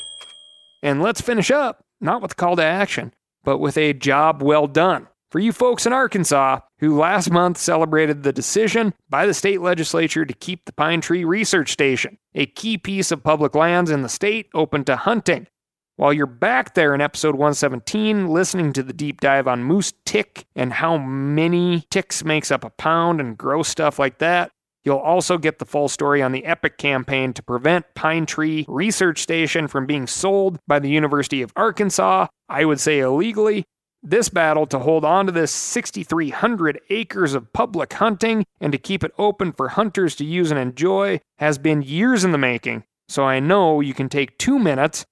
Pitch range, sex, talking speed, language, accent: 145-190 Hz, male, 190 wpm, English, American